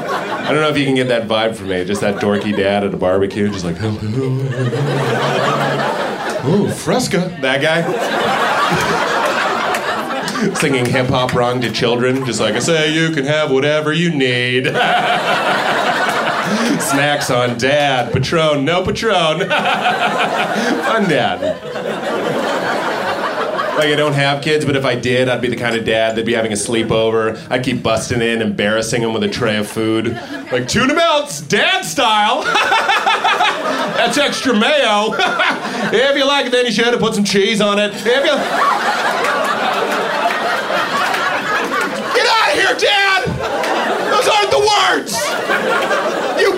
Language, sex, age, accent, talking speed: English, male, 30-49, American, 145 wpm